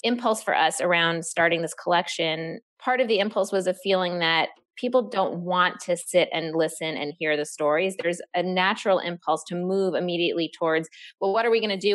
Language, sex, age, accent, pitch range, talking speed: English, female, 20-39, American, 160-195 Hz, 205 wpm